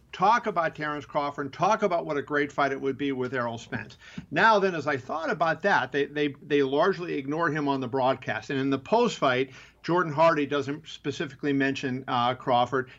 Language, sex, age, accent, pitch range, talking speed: English, male, 50-69, American, 140-185 Hz, 205 wpm